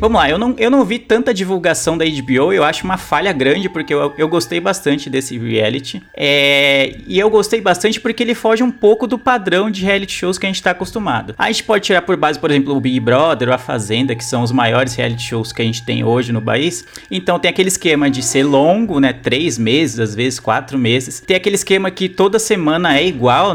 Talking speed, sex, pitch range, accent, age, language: 230 wpm, male, 135-185 Hz, Brazilian, 30-49, Portuguese